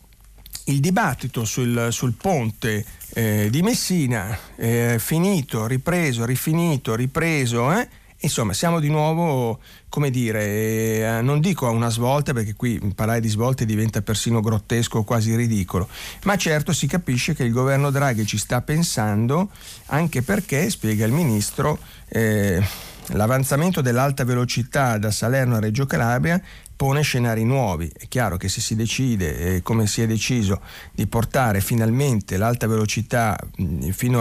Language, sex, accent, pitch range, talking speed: Italian, male, native, 105-135 Hz, 140 wpm